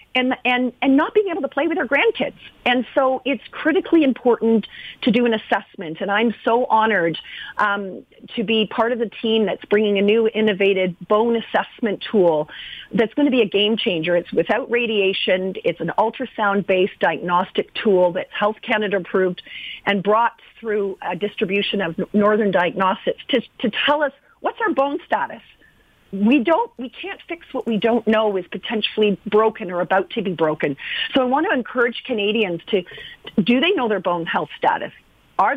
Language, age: English, 40-59